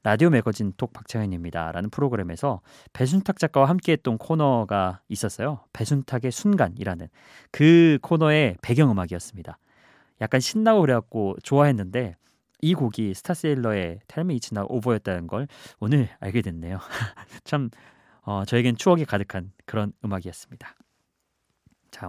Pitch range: 100-145 Hz